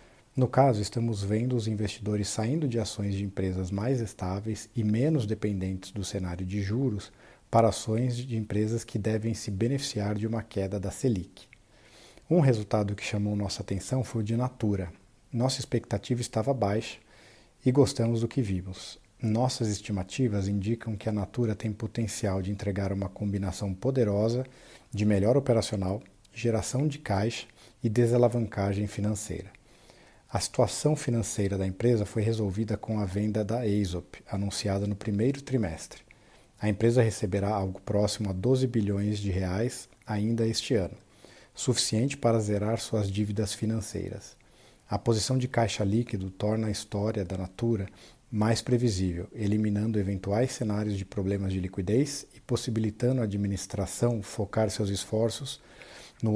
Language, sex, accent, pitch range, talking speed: Portuguese, male, Brazilian, 100-115 Hz, 145 wpm